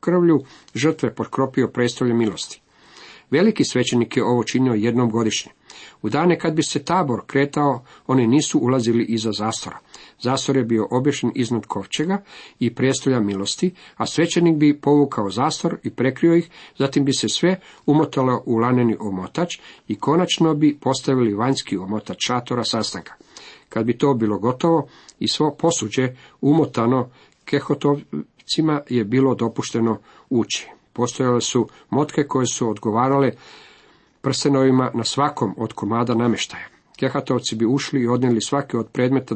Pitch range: 115-140 Hz